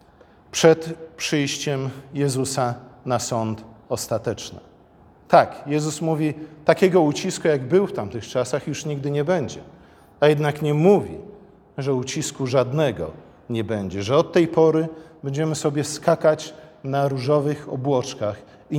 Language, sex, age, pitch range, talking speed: Polish, male, 40-59, 120-155 Hz, 130 wpm